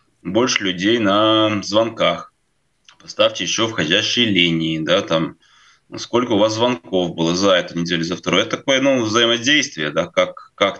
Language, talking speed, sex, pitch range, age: Russian, 150 wpm, male, 95-110 Hz, 20-39